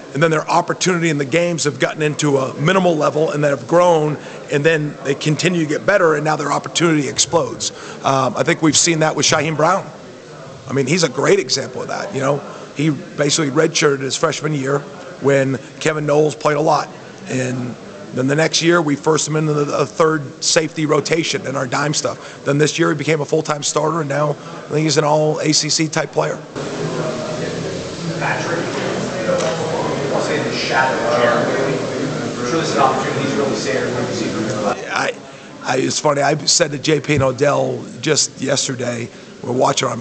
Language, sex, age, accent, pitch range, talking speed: English, male, 40-59, American, 140-160 Hz, 165 wpm